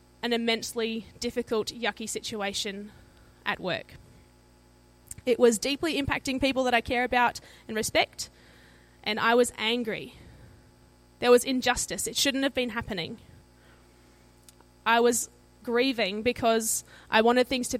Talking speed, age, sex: 130 wpm, 20-39, female